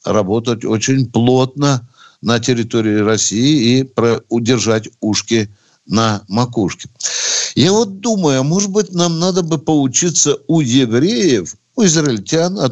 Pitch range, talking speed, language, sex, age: 115-170 Hz, 120 wpm, Russian, male, 60-79